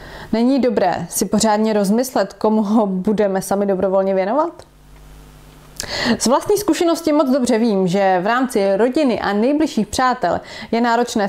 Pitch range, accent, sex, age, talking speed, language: 195-255 Hz, native, female, 30-49, 140 wpm, Czech